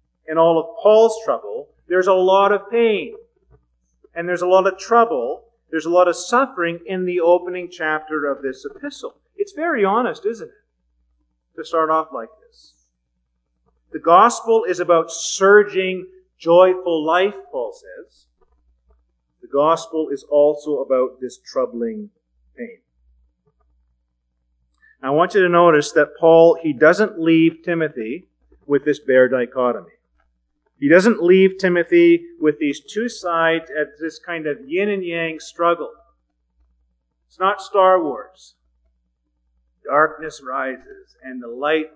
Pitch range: 125-205 Hz